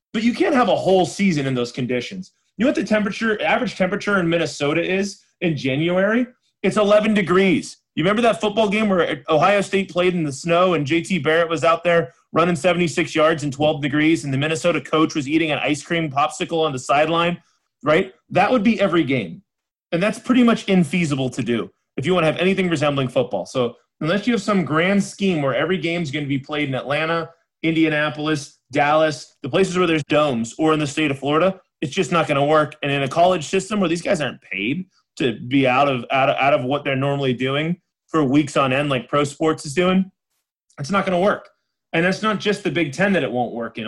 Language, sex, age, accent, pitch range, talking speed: English, male, 30-49, American, 145-190 Hz, 230 wpm